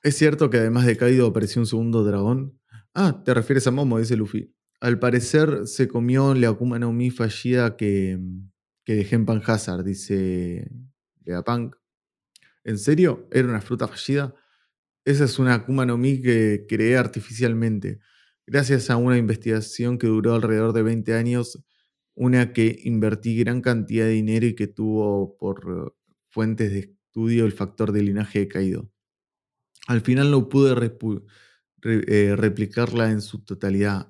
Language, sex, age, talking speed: Spanish, male, 20-39, 155 wpm